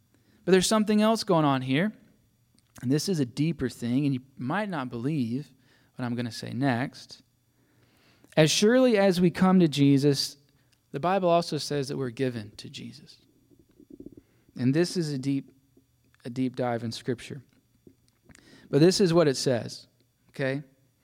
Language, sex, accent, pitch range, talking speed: English, male, American, 130-180 Hz, 165 wpm